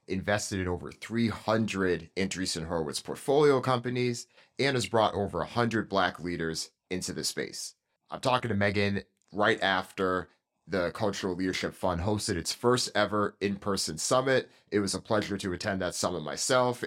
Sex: male